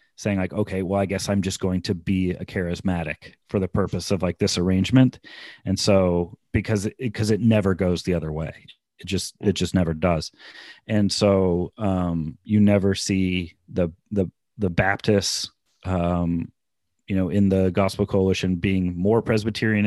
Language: English